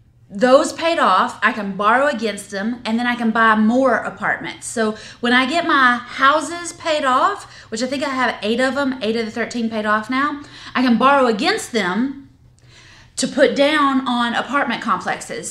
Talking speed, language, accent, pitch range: 190 wpm, English, American, 185-260 Hz